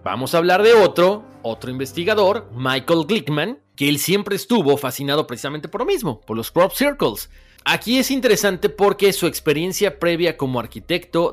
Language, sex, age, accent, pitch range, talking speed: Spanish, male, 40-59, Mexican, 120-175 Hz, 165 wpm